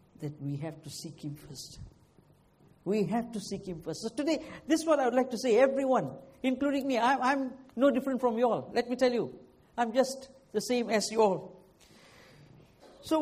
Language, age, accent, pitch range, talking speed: English, 60-79, Indian, 185-260 Hz, 200 wpm